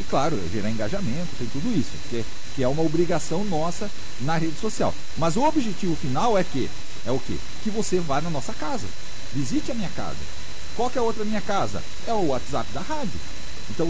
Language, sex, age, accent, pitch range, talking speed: Portuguese, male, 50-69, Brazilian, 130-210 Hz, 205 wpm